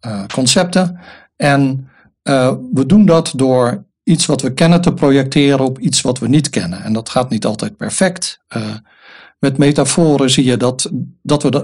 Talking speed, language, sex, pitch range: 170 wpm, Dutch, male, 125-150 Hz